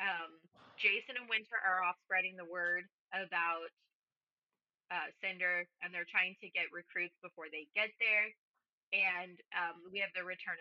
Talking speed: 160 wpm